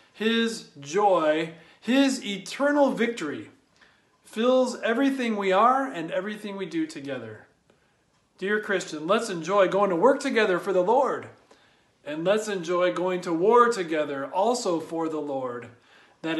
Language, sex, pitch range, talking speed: English, male, 165-230 Hz, 135 wpm